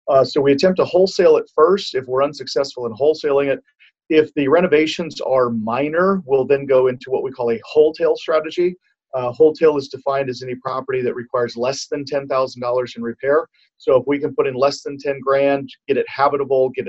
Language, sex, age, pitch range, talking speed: English, male, 40-59, 125-155 Hz, 205 wpm